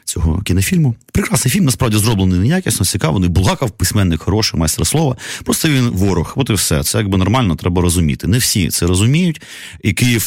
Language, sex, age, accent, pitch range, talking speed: Ukrainian, male, 30-49, native, 90-125 Hz, 170 wpm